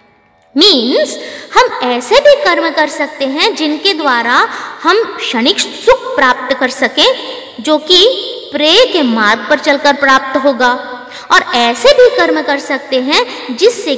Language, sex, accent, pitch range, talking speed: Hindi, female, native, 265-350 Hz, 140 wpm